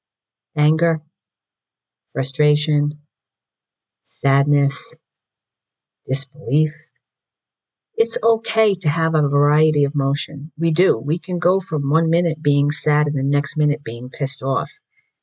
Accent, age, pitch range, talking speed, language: American, 50-69, 140-165 Hz, 115 wpm, English